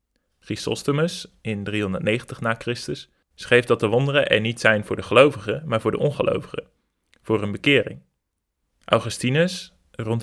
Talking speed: 140 wpm